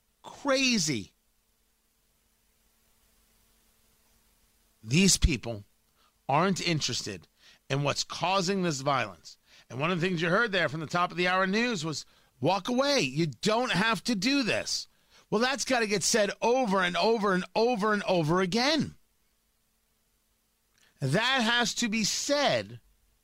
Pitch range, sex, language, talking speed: 175-235 Hz, male, English, 135 wpm